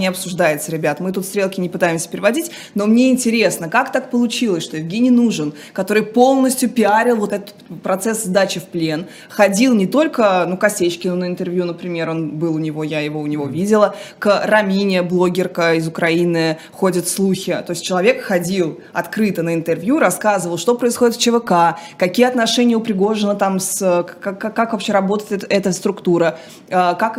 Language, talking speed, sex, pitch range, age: Russian, 170 wpm, female, 180-215 Hz, 20-39